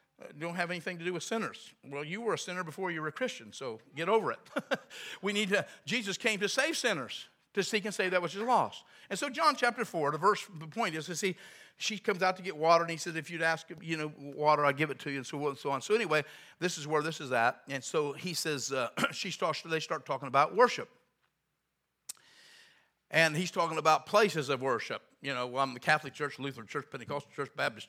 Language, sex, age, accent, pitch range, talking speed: English, male, 50-69, American, 140-190 Hz, 245 wpm